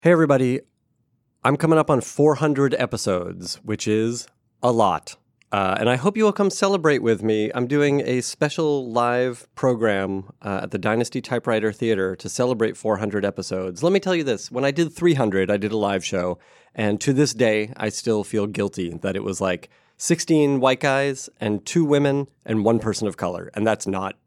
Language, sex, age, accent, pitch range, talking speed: English, male, 30-49, American, 105-130 Hz, 195 wpm